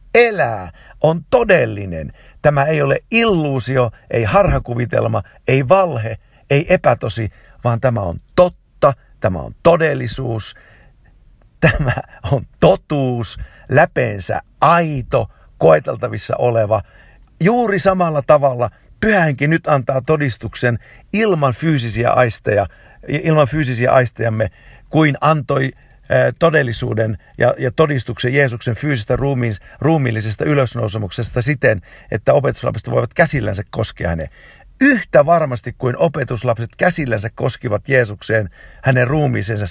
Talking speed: 100 wpm